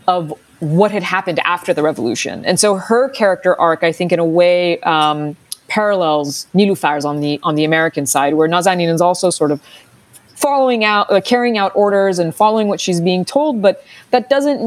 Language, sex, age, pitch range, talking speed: English, female, 20-39, 155-215 Hz, 190 wpm